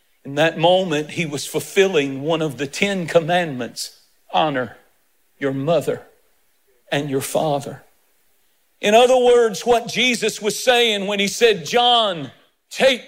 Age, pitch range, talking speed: 50-69, 175-225 Hz, 135 wpm